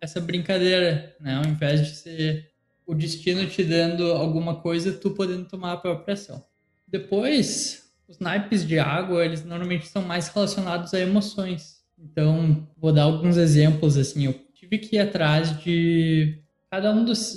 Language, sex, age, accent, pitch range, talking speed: Portuguese, male, 20-39, Brazilian, 160-195 Hz, 160 wpm